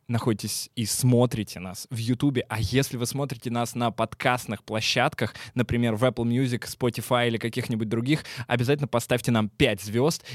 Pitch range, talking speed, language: 115-135 Hz, 155 wpm, Russian